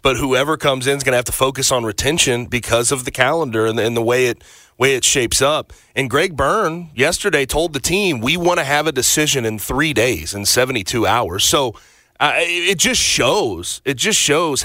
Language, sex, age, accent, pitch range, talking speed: English, male, 30-49, American, 125-165 Hz, 215 wpm